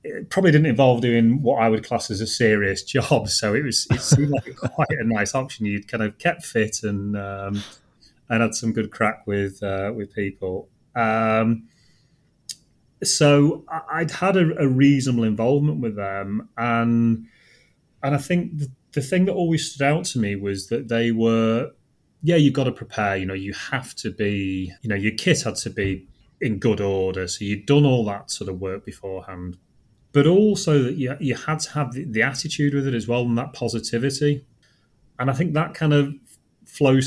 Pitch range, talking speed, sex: 105-140 Hz, 195 wpm, male